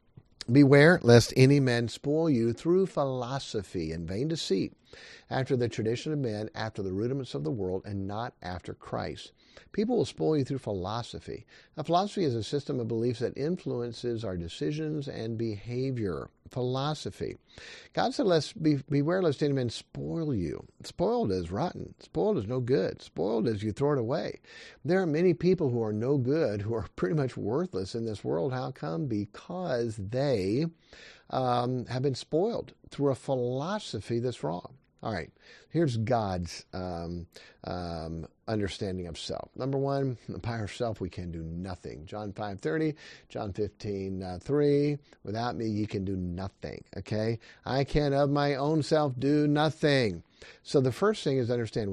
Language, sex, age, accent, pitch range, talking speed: Finnish, male, 50-69, American, 105-145 Hz, 165 wpm